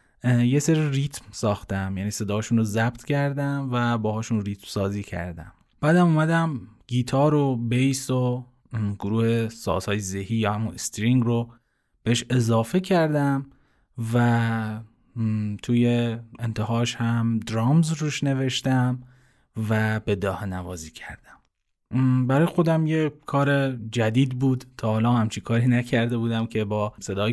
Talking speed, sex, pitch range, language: 125 wpm, male, 110-130 Hz, Persian